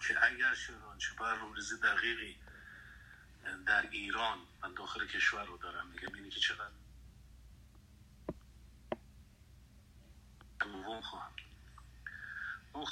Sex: male